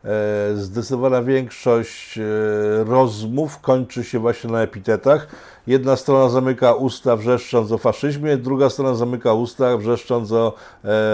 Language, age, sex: Polish, 50-69, male